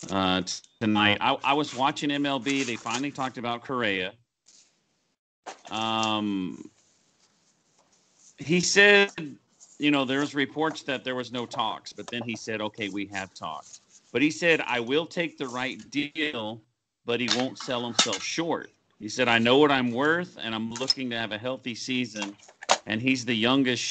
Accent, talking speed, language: American, 170 wpm, English